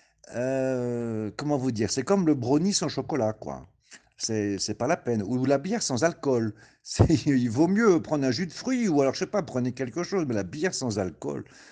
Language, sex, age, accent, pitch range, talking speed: French, male, 60-79, French, 115-155 Hz, 220 wpm